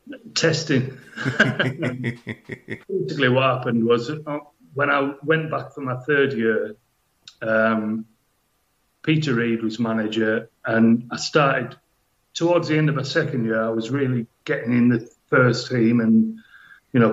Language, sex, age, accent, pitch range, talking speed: English, male, 30-49, British, 115-130 Hz, 135 wpm